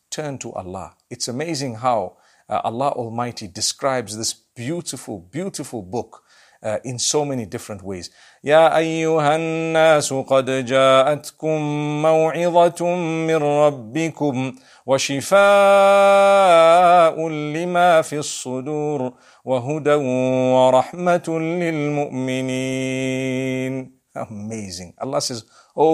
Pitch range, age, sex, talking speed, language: 125-160 Hz, 50-69, male, 55 wpm, English